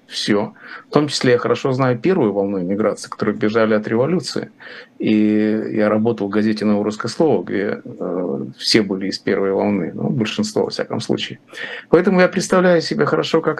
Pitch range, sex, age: 110-160 Hz, male, 50-69